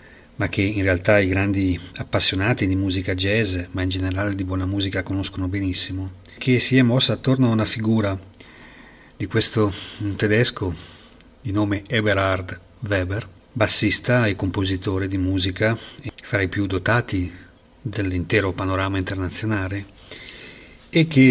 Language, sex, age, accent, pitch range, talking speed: Italian, male, 40-59, native, 95-110 Hz, 130 wpm